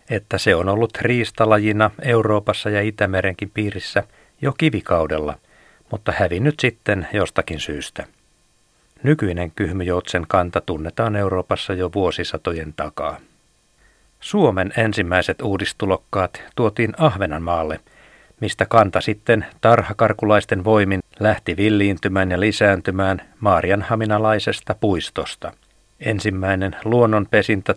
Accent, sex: native, male